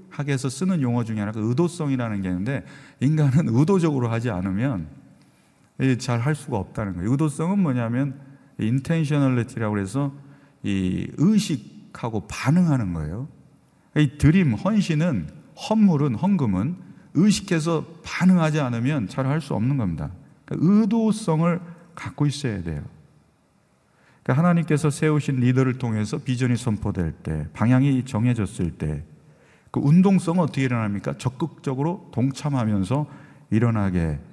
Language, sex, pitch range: Korean, male, 105-155 Hz